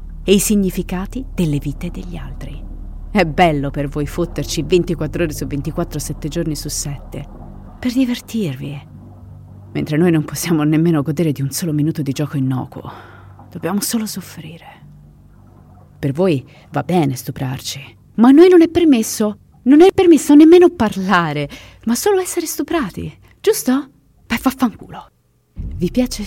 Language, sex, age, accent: Italian, female, 30-49, native